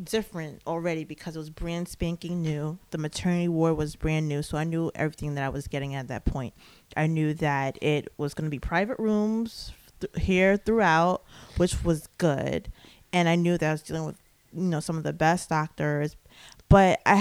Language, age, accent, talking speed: English, 20-39, American, 200 wpm